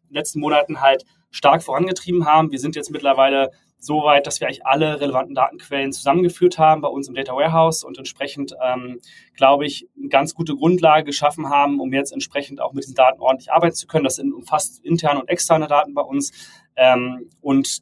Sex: male